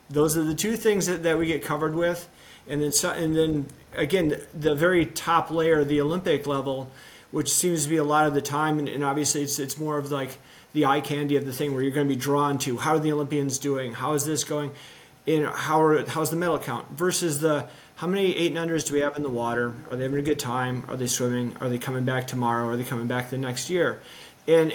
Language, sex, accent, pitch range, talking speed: English, male, American, 140-160 Hz, 255 wpm